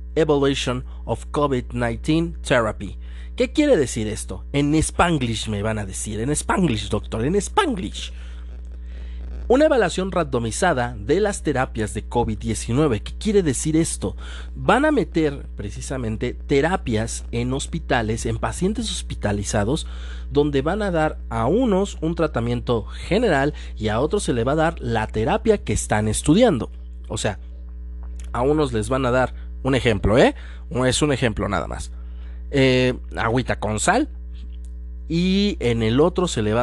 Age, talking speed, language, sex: 40-59, 145 wpm, Spanish, male